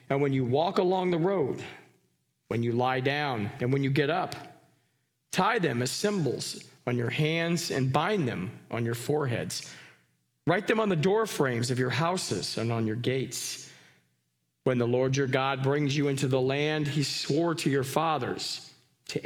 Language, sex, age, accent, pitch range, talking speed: English, male, 40-59, American, 125-160 Hz, 180 wpm